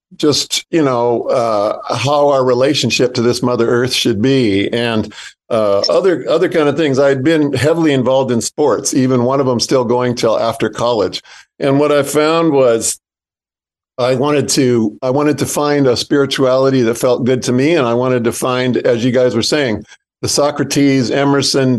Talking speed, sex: 185 wpm, male